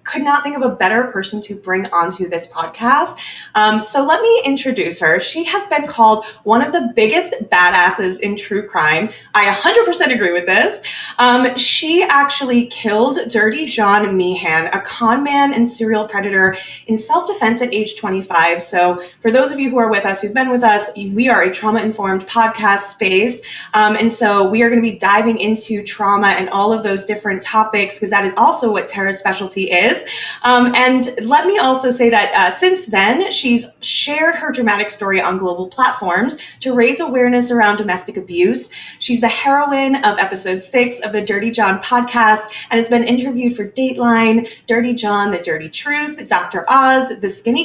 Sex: female